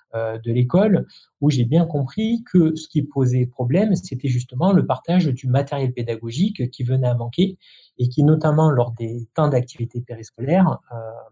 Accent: French